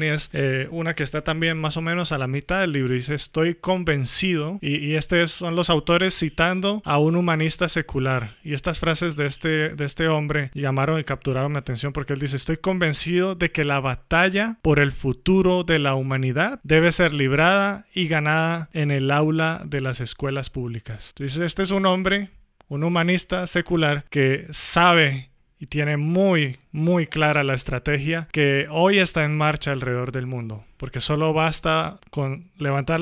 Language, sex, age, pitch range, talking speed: Spanish, male, 30-49, 140-170 Hz, 180 wpm